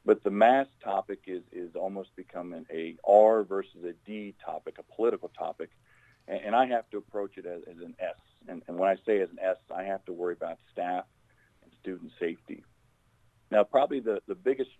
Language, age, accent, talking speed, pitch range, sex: English, 40-59, American, 200 wpm, 95-120 Hz, male